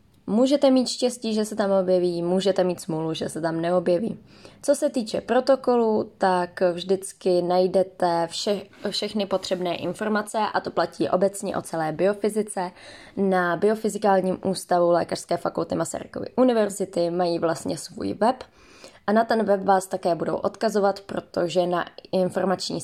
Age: 20-39